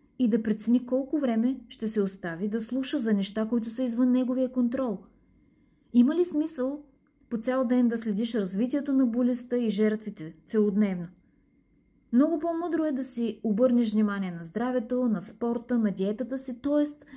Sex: female